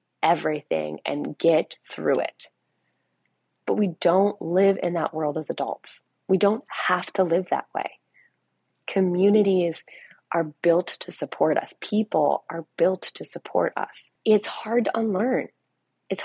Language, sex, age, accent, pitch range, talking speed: English, female, 30-49, American, 180-230 Hz, 140 wpm